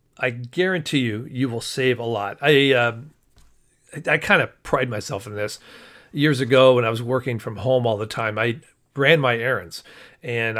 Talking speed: 195 wpm